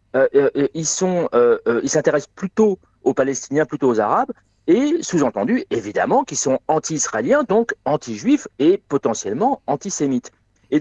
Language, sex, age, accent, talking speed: French, male, 40-59, French, 145 wpm